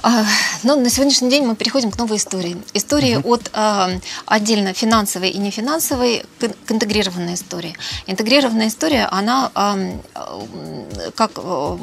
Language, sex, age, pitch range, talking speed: Russian, female, 20-39, 190-240 Hz, 110 wpm